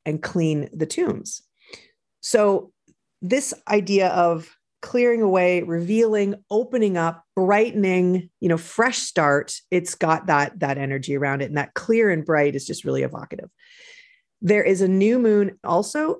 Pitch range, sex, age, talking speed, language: 165-235 Hz, female, 40-59, 150 wpm, English